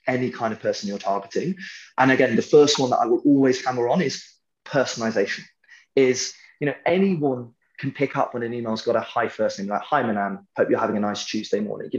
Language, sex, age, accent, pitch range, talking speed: English, male, 20-39, British, 120-170 Hz, 225 wpm